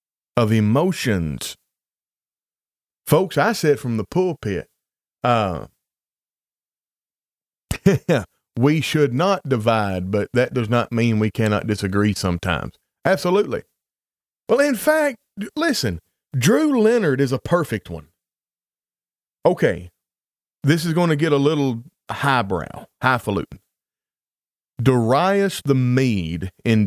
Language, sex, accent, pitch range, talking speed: English, male, American, 105-140 Hz, 105 wpm